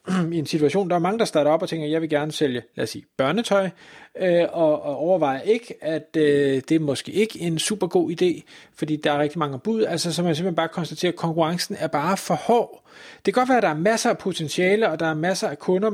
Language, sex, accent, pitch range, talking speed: Danish, male, native, 150-200 Hz, 260 wpm